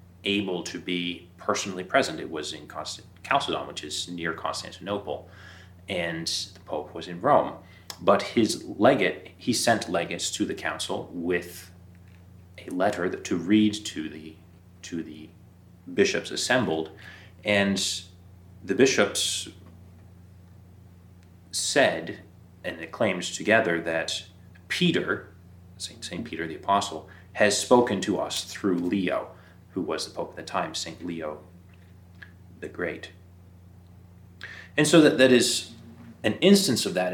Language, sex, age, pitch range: English, male, 30-49, 90-95 Hz